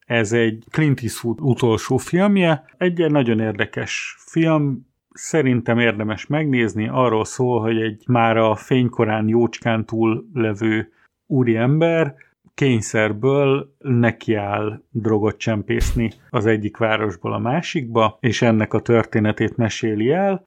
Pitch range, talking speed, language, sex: 110-125 Hz, 115 wpm, Hungarian, male